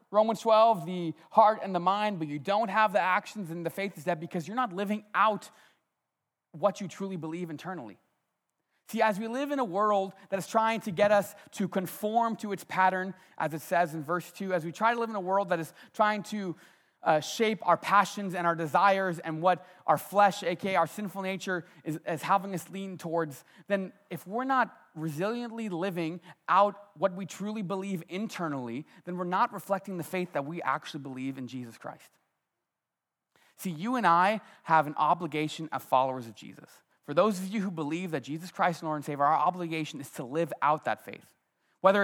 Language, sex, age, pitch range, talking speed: English, male, 30-49, 150-195 Hz, 205 wpm